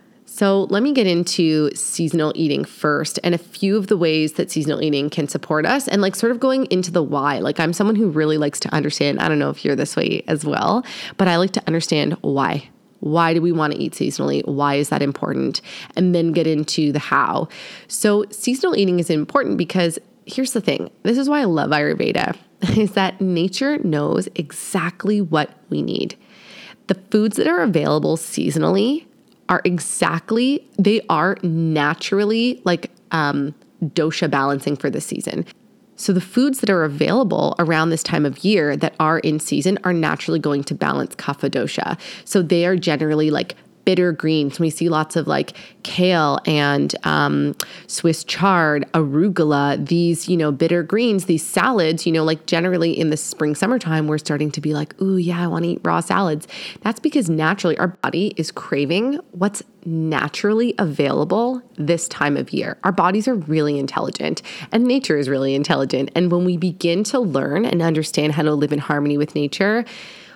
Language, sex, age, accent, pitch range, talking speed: English, female, 20-39, American, 155-200 Hz, 185 wpm